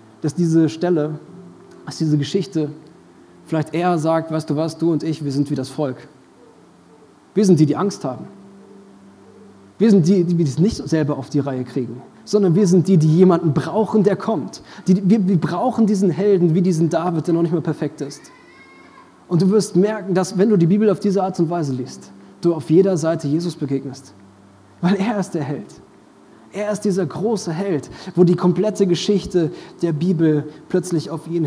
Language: German